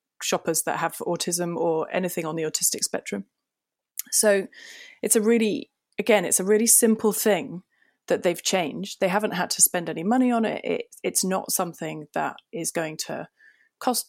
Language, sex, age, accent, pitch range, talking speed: English, female, 20-39, British, 170-210 Hz, 175 wpm